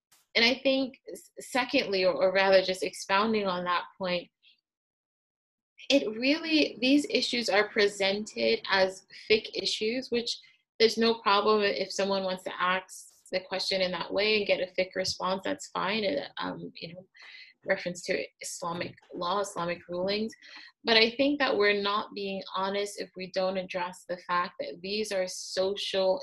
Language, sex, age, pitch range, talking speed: English, female, 20-39, 180-215 Hz, 160 wpm